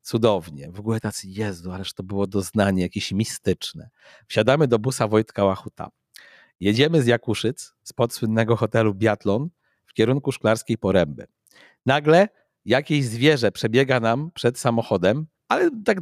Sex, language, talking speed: male, Polish, 135 wpm